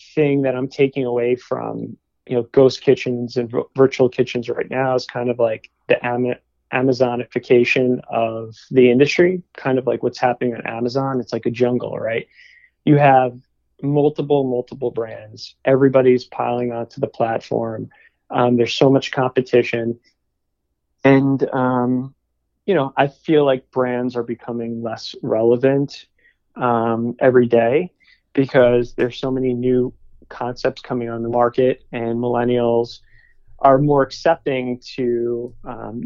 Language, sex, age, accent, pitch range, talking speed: English, male, 20-39, American, 120-135 Hz, 140 wpm